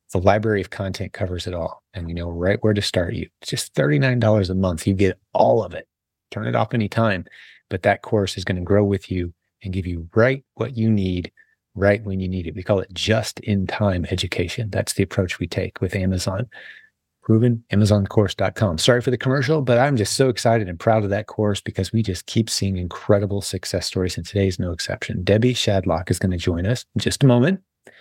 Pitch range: 95-115 Hz